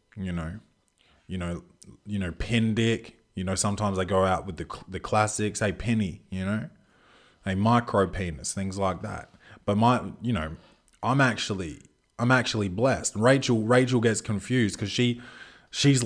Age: 20-39